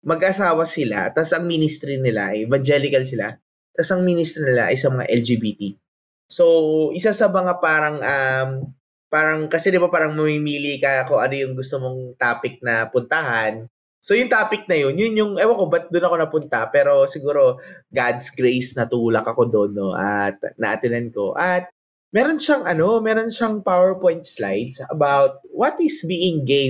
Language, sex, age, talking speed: Filipino, male, 20-39, 165 wpm